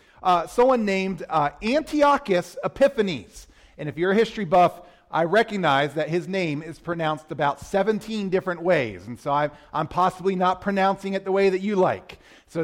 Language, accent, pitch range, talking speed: English, American, 160-235 Hz, 170 wpm